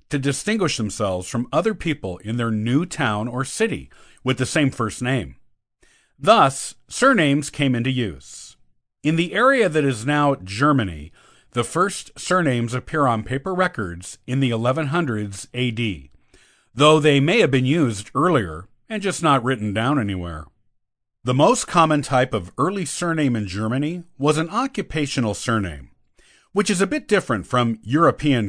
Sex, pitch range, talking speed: male, 110-155 Hz, 155 wpm